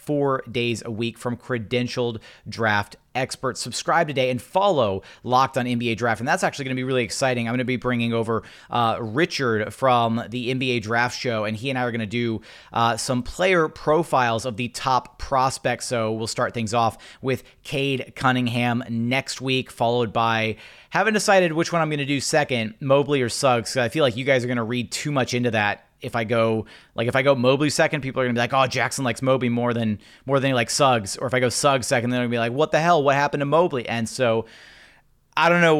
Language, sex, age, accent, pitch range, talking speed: English, male, 30-49, American, 115-140 Hz, 230 wpm